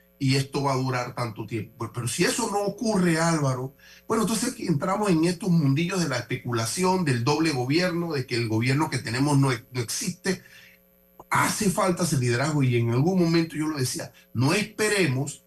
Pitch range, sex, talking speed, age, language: 120-180 Hz, male, 180 wpm, 40-59, Spanish